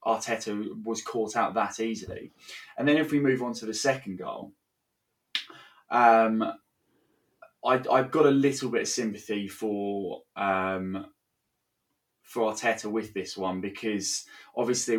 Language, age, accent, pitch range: English, 20-39, British, 105-130 Hz